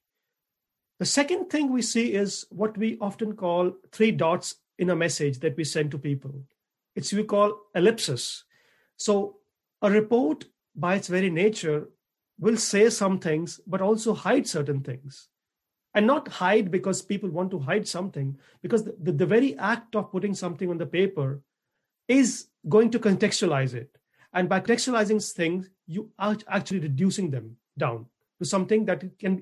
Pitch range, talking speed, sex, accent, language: 150-210 Hz, 165 wpm, male, Indian, English